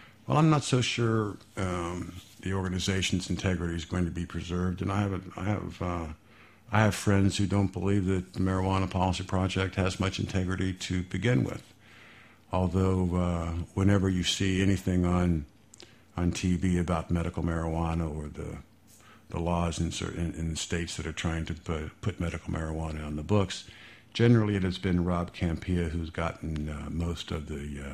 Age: 50-69